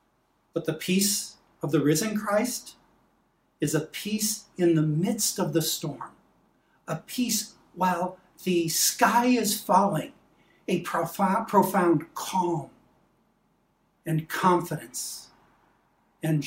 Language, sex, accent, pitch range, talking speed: English, male, American, 150-185 Hz, 105 wpm